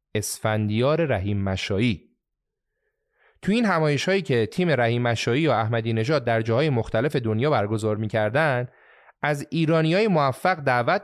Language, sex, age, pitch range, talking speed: Persian, male, 30-49, 120-180 Hz, 120 wpm